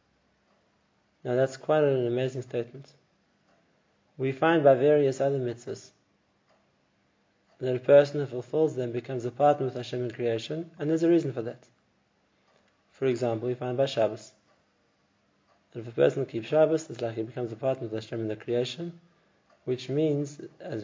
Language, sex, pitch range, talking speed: English, male, 120-145 Hz, 165 wpm